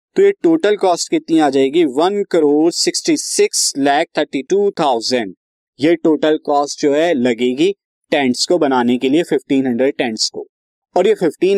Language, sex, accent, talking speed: Hindi, male, native, 160 wpm